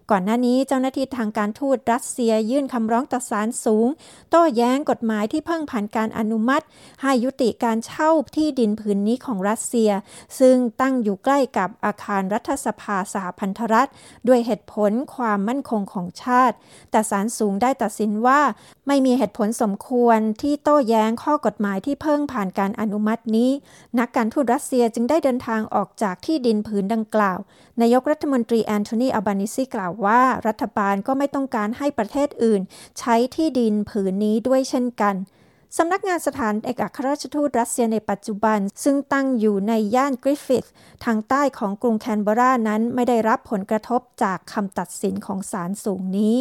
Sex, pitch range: female, 215-265 Hz